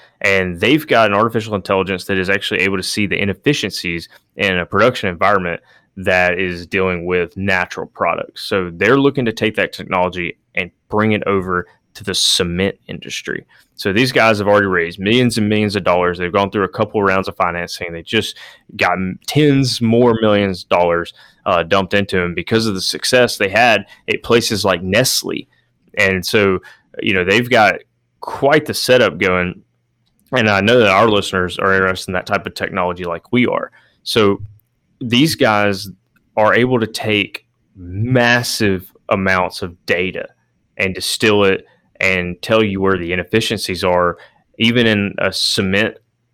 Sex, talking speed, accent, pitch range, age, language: male, 170 wpm, American, 95-110 Hz, 20-39, English